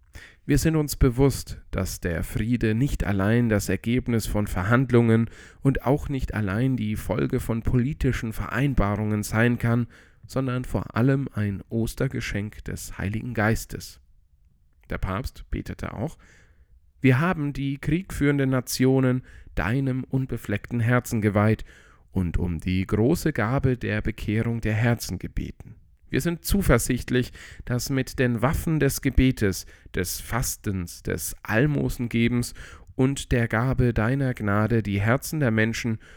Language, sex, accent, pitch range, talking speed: German, male, German, 95-125 Hz, 130 wpm